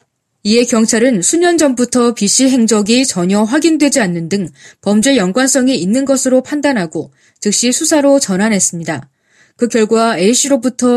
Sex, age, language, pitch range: female, 20-39, Korean, 185-255 Hz